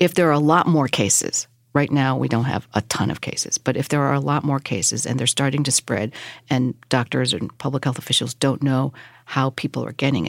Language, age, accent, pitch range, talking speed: English, 40-59, American, 125-150 Hz, 240 wpm